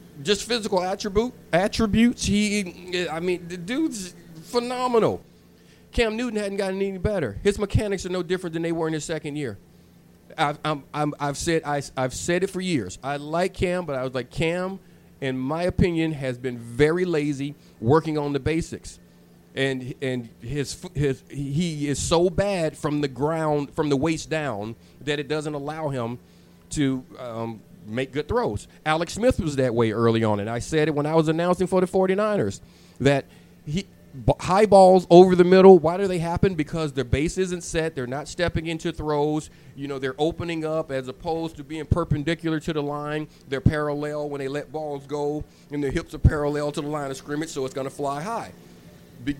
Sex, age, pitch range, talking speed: male, 40-59, 140-175 Hz, 195 wpm